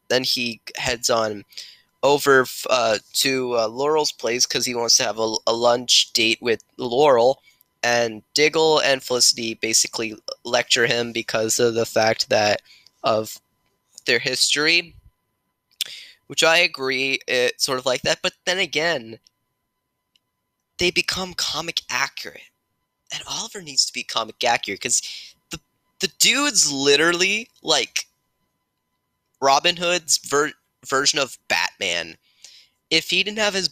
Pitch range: 115-175 Hz